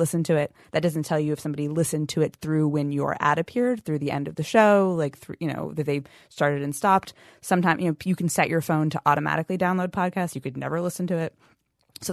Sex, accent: female, American